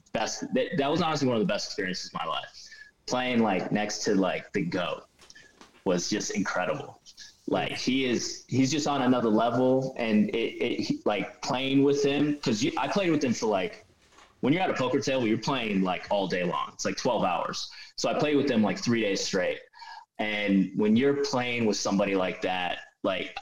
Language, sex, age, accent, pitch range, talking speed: English, male, 20-39, American, 100-130 Hz, 205 wpm